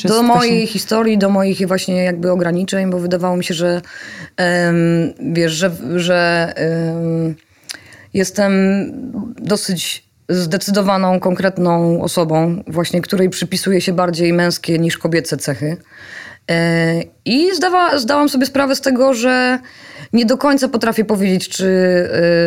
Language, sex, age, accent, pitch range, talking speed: Polish, female, 20-39, native, 175-205 Hz, 115 wpm